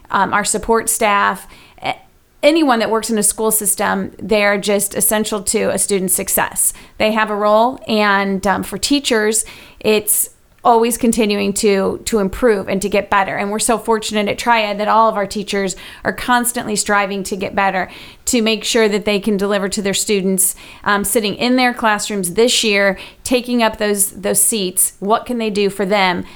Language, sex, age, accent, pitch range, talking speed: English, female, 30-49, American, 200-220 Hz, 185 wpm